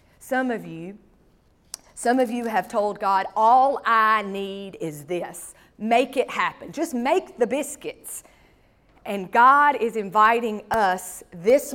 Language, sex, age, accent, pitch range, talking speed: English, female, 40-59, American, 200-285 Hz, 140 wpm